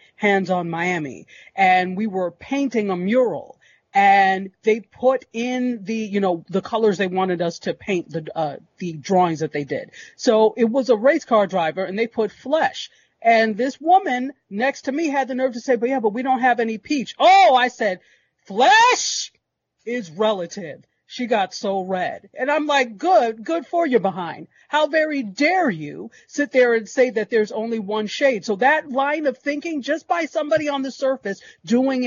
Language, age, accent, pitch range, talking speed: English, 40-59, American, 200-265 Hz, 195 wpm